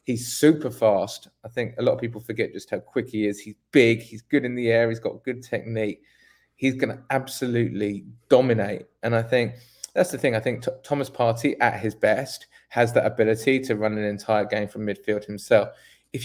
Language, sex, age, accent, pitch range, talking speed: English, male, 20-39, British, 110-130 Hz, 205 wpm